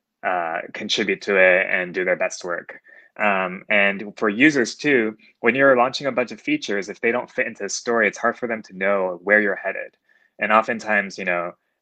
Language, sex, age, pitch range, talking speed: English, male, 20-39, 95-115 Hz, 210 wpm